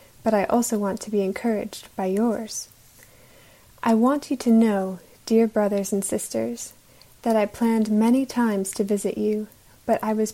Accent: American